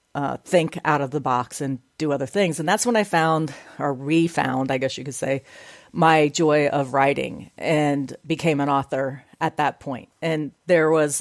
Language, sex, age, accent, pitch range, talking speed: English, female, 40-59, American, 140-170 Hz, 195 wpm